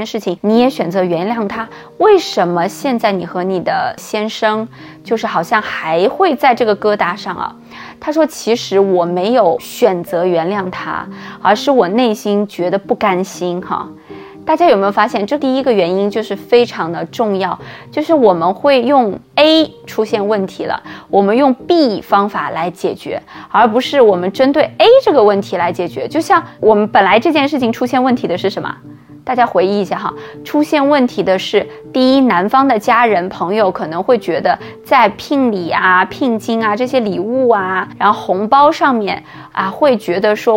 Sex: female